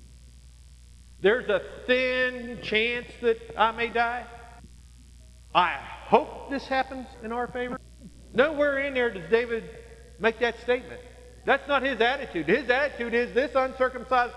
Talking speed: 135 wpm